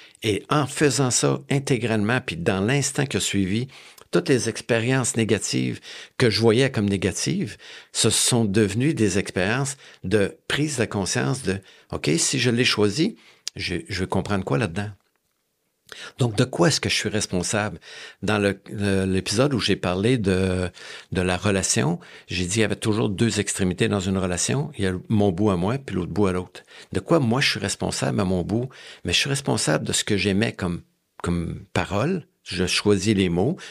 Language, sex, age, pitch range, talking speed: French, male, 60-79, 95-120 Hz, 185 wpm